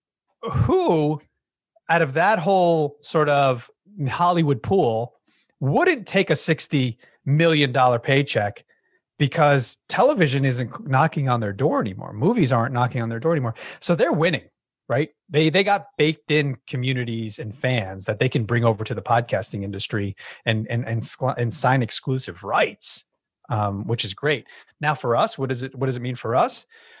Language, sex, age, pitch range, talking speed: English, male, 30-49, 115-160 Hz, 165 wpm